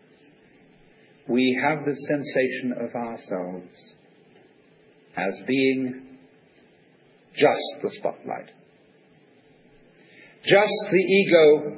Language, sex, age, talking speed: English, male, 50-69, 70 wpm